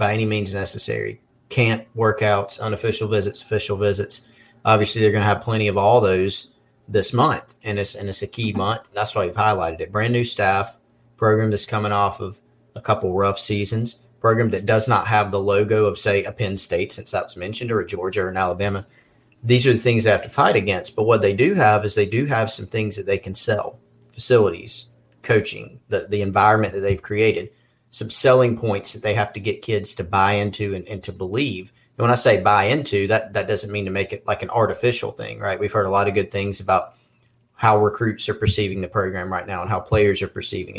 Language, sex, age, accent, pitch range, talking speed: English, male, 40-59, American, 100-115 Hz, 225 wpm